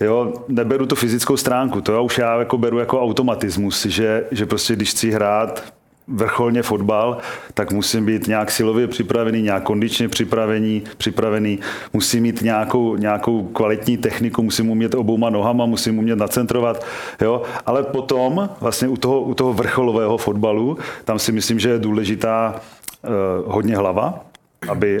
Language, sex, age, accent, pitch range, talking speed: Czech, male, 40-59, native, 105-115 Hz, 140 wpm